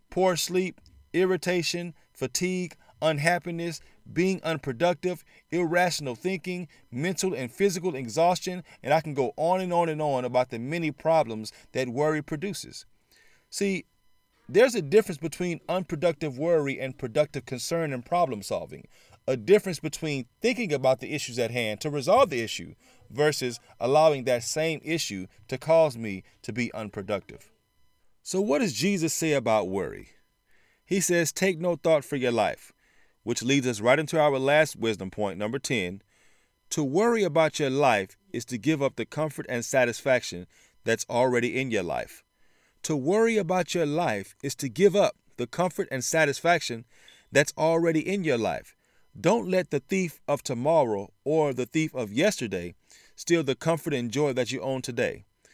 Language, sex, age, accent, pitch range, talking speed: English, male, 40-59, American, 125-175 Hz, 160 wpm